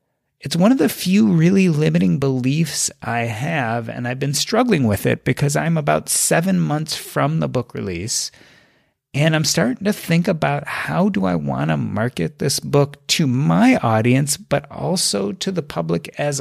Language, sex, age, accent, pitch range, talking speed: English, male, 30-49, American, 130-170 Hz, 175 wpm